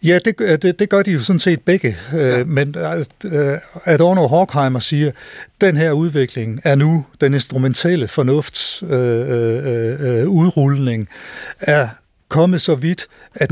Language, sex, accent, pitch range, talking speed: Danish, male, native, 120-155 Hz, 140 wpm